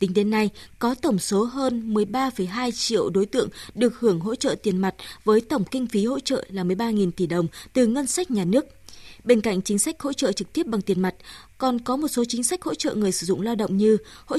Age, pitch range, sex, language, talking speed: 20-39, 200-260 Hz, female, Vietnamese, 240 wpm